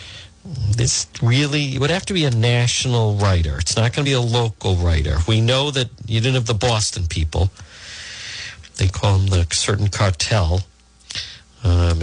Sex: male